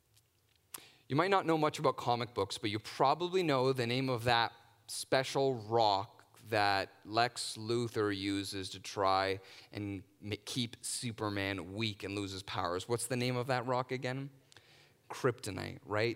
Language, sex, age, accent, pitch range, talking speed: English, male, 30-49, American, 115-155 Hz, 150 wpm